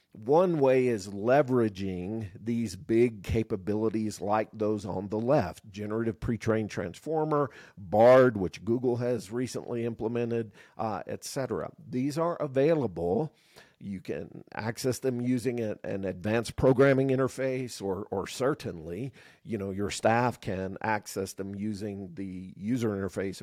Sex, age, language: male, 50-69, English